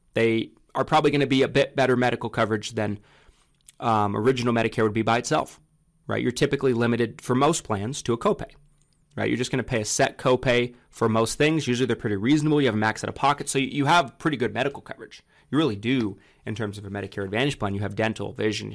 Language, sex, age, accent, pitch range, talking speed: English, male, 30-49, American, 110-135 Hz, 235 wpm